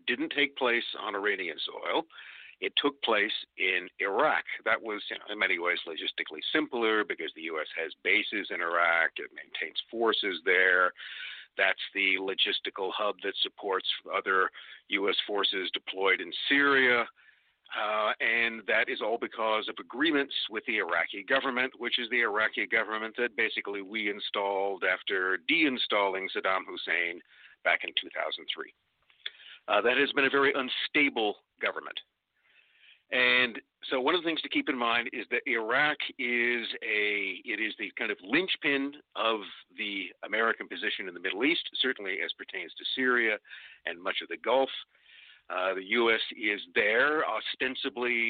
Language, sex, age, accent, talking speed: English, male, 50-69, American, 150 wpm